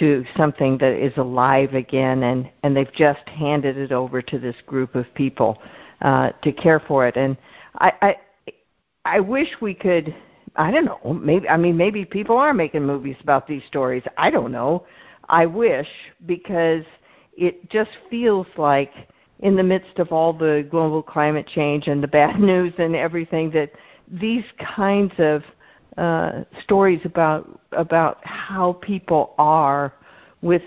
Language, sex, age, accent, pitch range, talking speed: English, female, 60-79, American, 140-170 Hz, 160 wpm